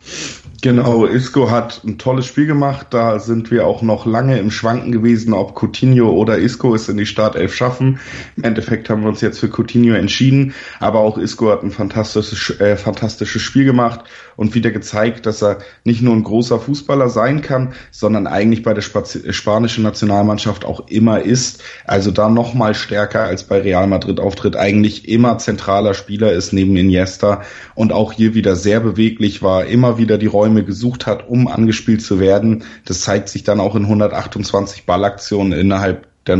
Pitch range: 100-115 Hz